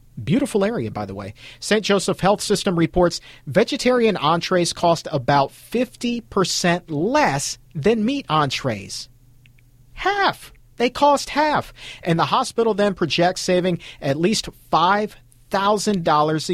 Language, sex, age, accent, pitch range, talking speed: English, male, 50-69, American, 125-195 Hz, 115 wpm